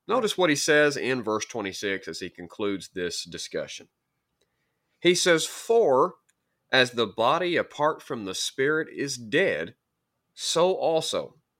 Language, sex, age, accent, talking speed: English, male, 30-49, American, 135 wpm